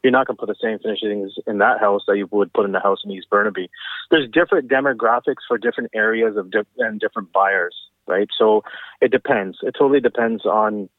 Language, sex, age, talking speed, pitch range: English, male, 30-49, 215 wpm, 105-135 Hz